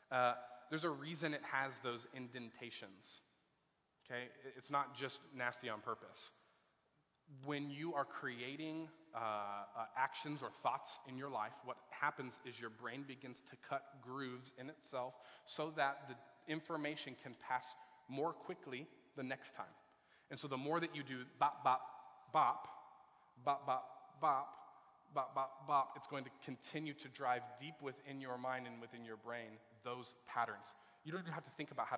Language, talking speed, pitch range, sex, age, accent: English, 165 wpm, 125-150 Hz, male, 30-49, American